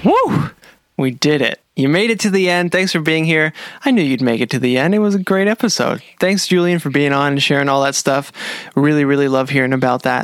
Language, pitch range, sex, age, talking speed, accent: English, 140-170 Hz, male, 20-39, 250 wpm, American